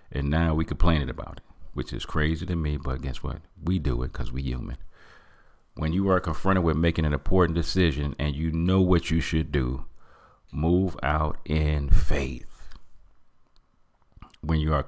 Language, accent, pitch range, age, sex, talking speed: English, American, 70-85 Hz, 40-59, male, 180 wpm